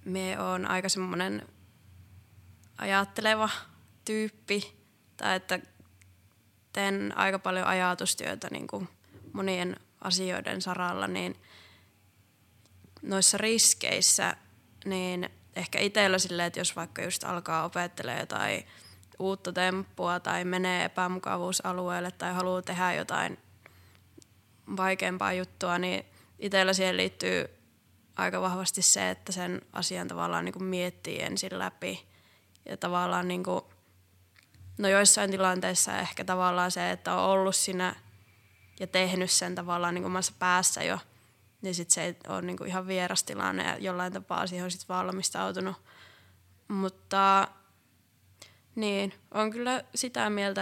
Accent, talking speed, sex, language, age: native, 115 wpm, female, Finnish, 20-39